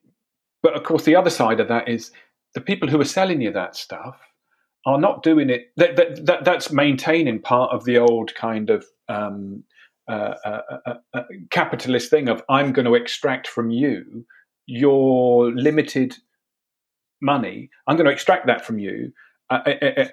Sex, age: male, 40-59